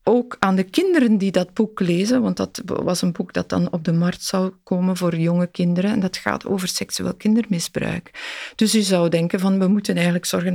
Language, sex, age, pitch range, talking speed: Dutch, female, 50-69, 175-235 Hz, 215 wpm